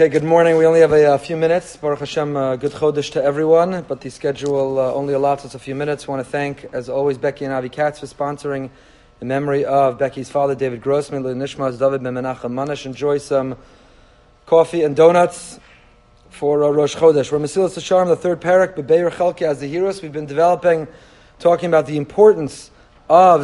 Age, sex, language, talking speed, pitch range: 30-49, male, English, 195 wpm, 145-185 Hz